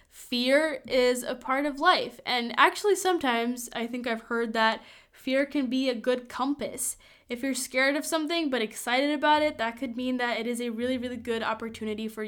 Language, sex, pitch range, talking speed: English, female, 220-280 Hz, 200 wpm